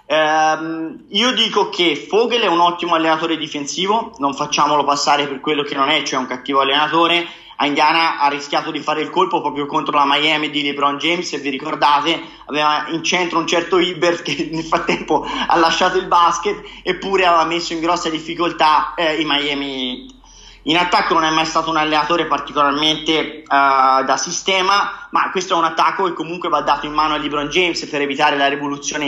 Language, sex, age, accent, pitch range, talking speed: Italian, male, 20-39, native, 150-180 Hz, 190 wpm